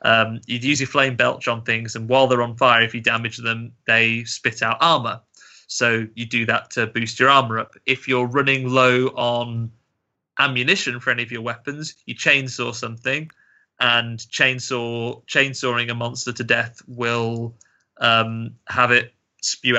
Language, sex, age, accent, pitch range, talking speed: English, male, 20-39, British, 115-130 Hz, 170 wpm